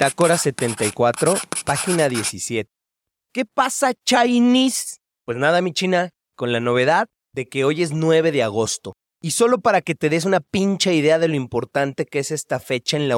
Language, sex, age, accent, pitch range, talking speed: Spanish, male, 30-49, Mexican, 135-200 Hz, 180 wpm